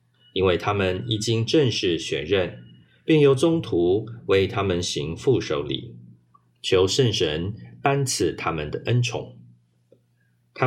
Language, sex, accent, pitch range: Chinese, male, native, 95-120 Hz